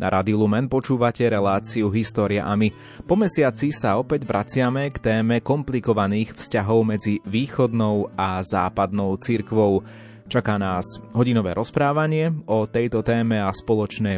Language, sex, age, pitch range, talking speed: Slovak, male, 30-49, 100-125 Hz, 125 wpm